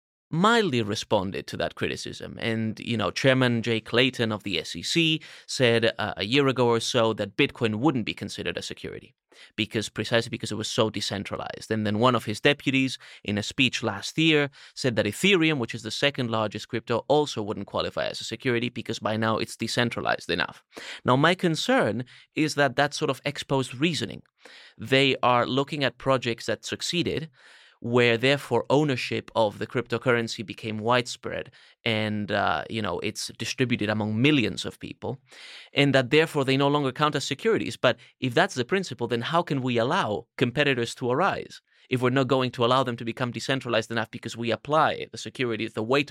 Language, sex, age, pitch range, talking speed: English, male, 30-49, 110-140 Hz, 185 wpm